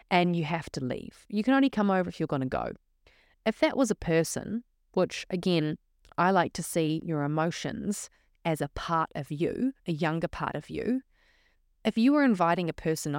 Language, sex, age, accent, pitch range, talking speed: English, female, 30-49, Australian, 155-210 Hz, 200 wpm